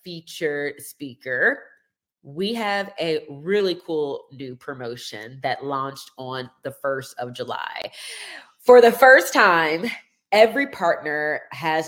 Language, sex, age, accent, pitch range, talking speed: English, female, 30-49, American, 160-250 Hz, 115 wpm